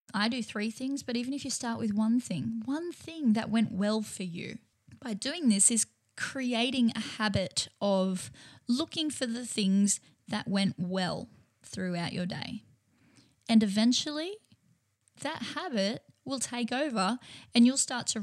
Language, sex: English, female